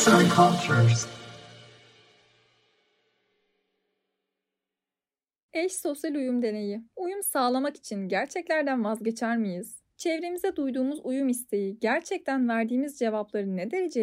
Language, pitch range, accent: Turkish, 215-300 Hz, native